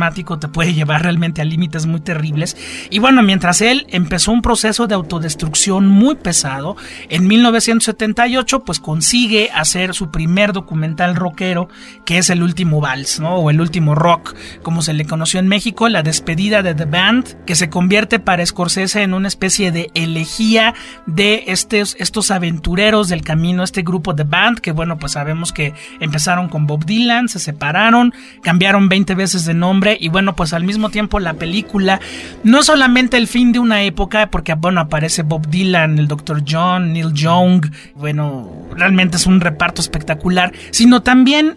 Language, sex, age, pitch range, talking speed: Spanish, male, 40-59, 165-220 Hz, 170 wpm